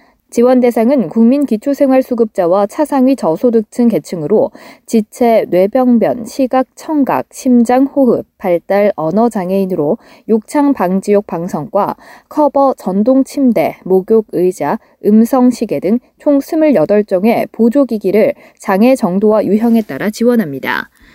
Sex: female